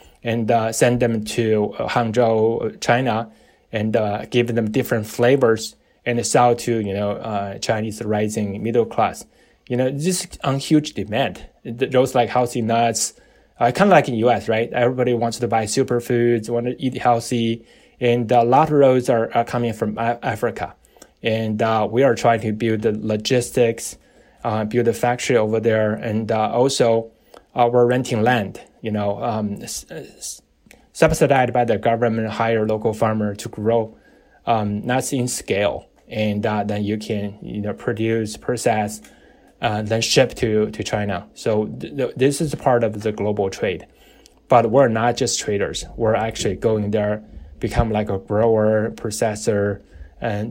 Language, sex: English, male